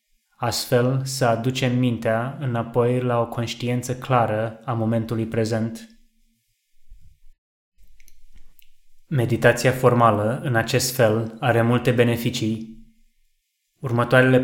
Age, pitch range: 20-39, 115-125 Hz